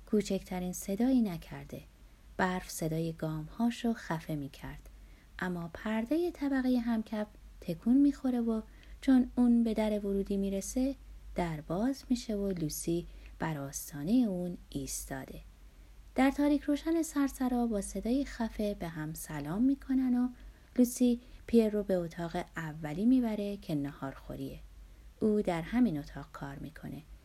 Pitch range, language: 155-235 Hz, Persian